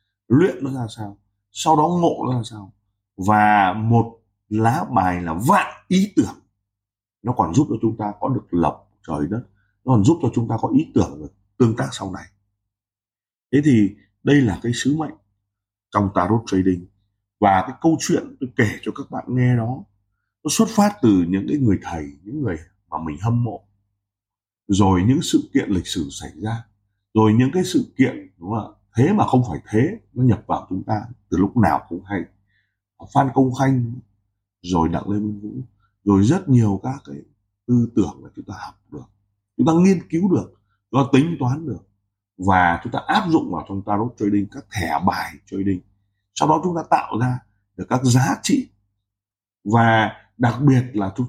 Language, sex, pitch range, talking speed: Vietnamese, male, 100-125 Hz, 195 wpm